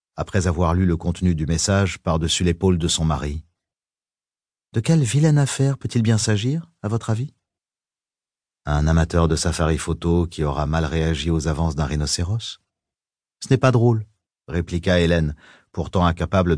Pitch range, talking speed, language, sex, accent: 80-105 Hz, 155 wpm, French, male, French